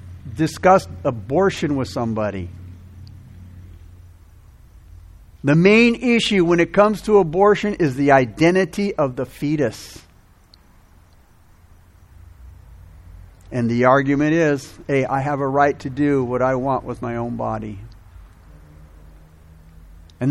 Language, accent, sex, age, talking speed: English, American, male, 50-69, 110 wpm